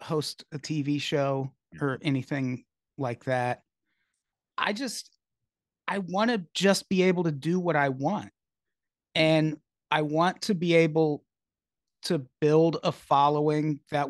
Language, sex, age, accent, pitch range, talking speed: English, male, 30-49, American, 140-170 Hz, 135 wpm